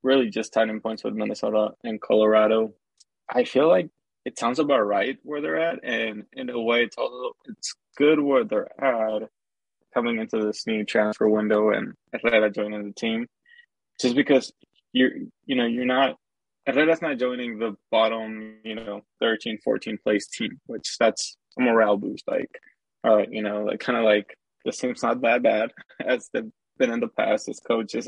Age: 20-39